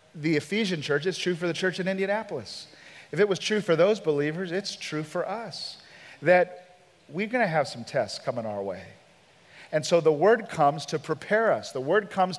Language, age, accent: English, 40-59, American